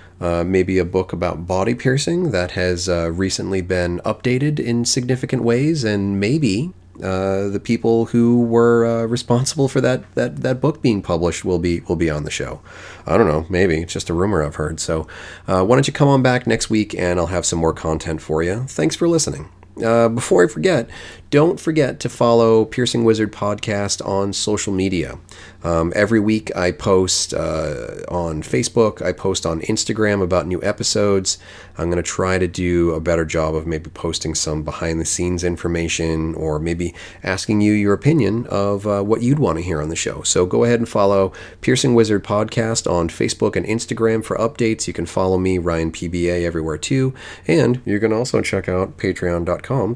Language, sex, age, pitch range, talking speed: English, male, 30-49, 85-115 Hz, 190 wpm